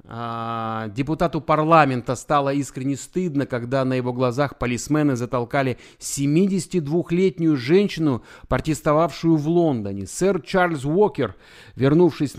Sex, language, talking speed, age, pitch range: male, Russian, 95 wpm, 30-49, 120-165 Hz